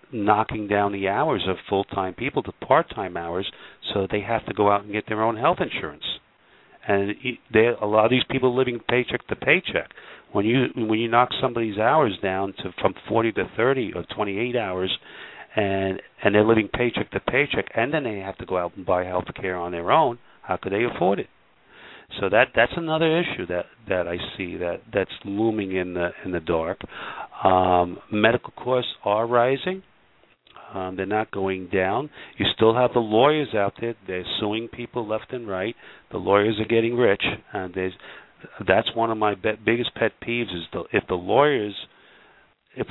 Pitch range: 95-115 Hz